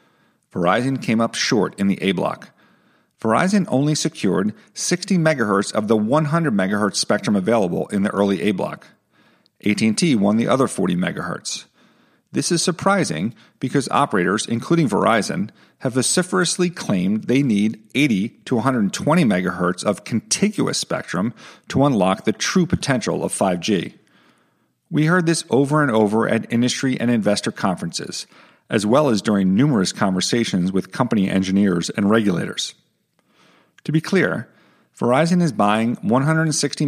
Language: English